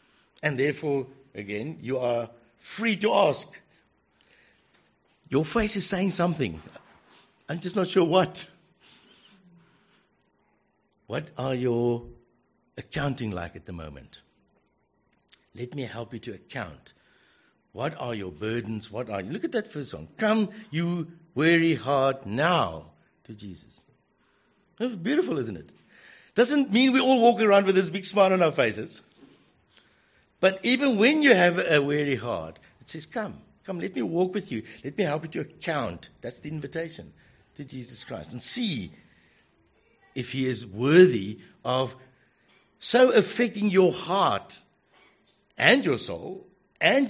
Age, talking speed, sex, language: 60-79, 140 wpm, male, English